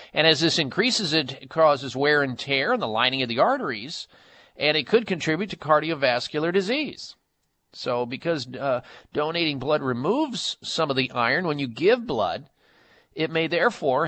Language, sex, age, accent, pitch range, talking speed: English, male, 50-69, American, 130-170 Hz, 165 wpm